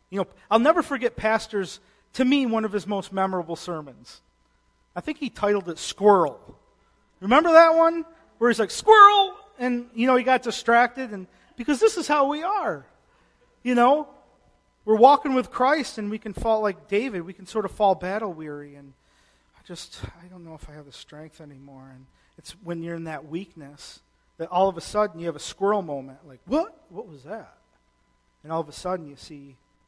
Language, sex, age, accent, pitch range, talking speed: English, male, 40-59, American, 140-205 Hz, 200 wpm